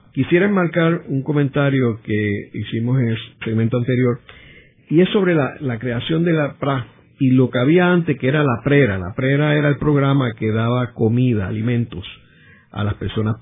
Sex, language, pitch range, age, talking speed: male, Spanish, 110-150 Hz, 50-69, 180 wpm